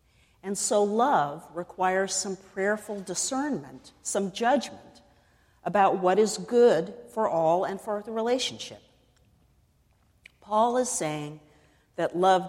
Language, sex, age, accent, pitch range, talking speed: English, female, 50-69, American, 155-225 Hz, 115 wpm